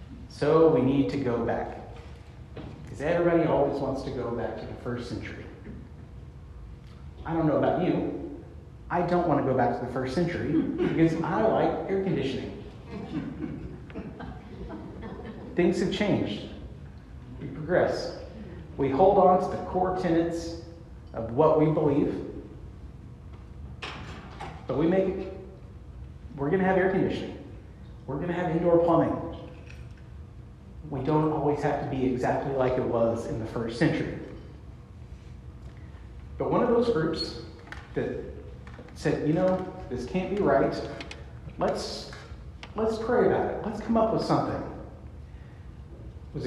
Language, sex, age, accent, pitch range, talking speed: English, male, 40-59, American, 125-180 Hz, 140 wpm